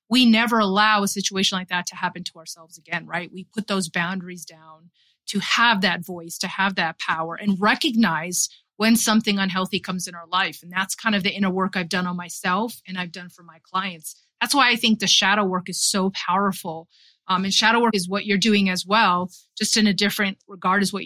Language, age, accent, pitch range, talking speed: English, 30-49, American, 185-220 Hz, 225 wpm